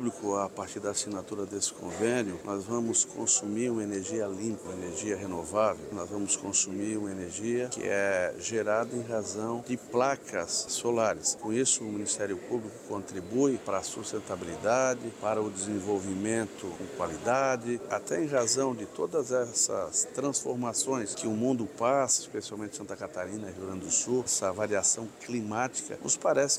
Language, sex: Portuguese, male